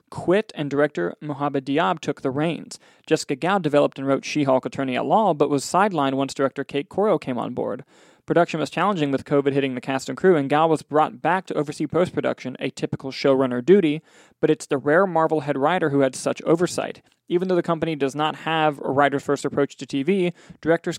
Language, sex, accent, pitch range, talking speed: English, male, American, 135-165 Hz, 210 wpm